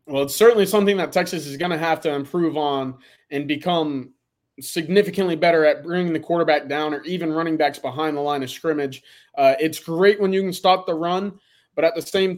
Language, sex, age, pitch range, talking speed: English, male, 20-39, 155-190 Hz, 215 wpm